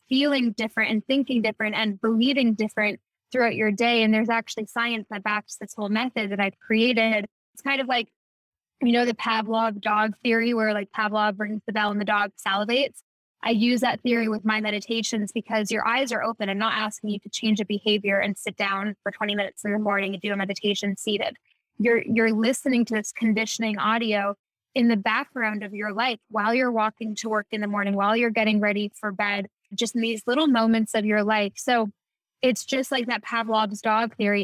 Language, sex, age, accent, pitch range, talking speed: English, female, 10-29, American, 210-240 Hz, 210 wpm